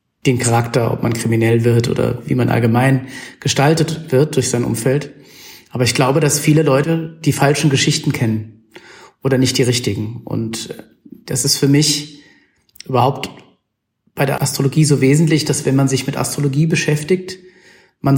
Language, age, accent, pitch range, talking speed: German, 40-59, German, 125-145 Hz, 160 wpm